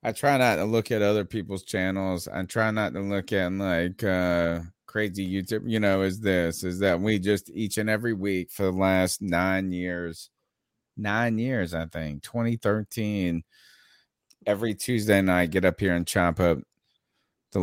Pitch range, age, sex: 90-110 Hz, 30-49, male